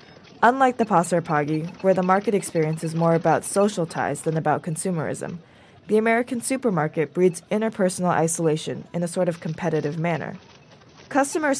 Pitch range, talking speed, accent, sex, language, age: 165-220 Hz, 150 wpm, American, female, English, 20-39